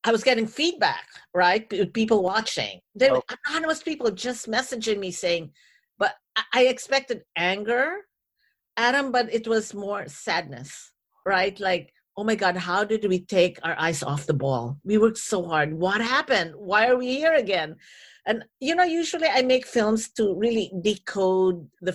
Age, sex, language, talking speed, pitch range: 50-69, female, English, 165 wpm, 175-245 Hz